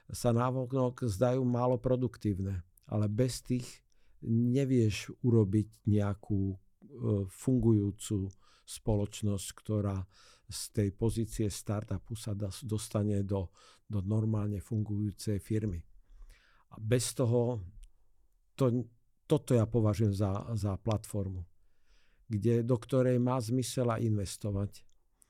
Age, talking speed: 50-69, 95 wpm